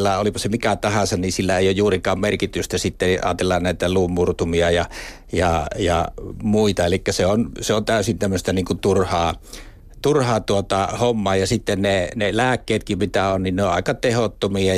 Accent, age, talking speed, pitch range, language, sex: native, 60-79, 170 wpm, 95-115 Hz, Finnish, male